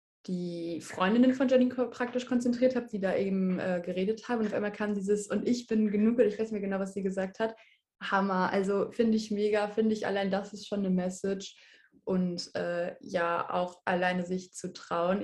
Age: 20-39